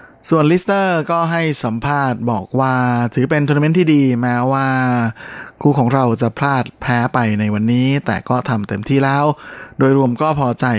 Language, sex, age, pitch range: Thai, male, 20-39, 110-130 Hz